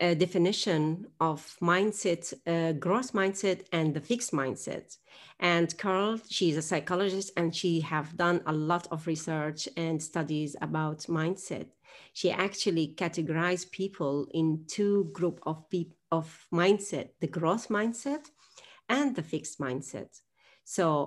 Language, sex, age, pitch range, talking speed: English, female, 40-59, 160-195 Hz, 135 wpm